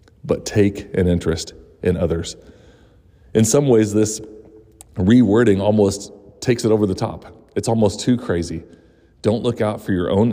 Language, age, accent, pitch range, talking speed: English, 40-59, American, 90-110 Hz, 155 wpm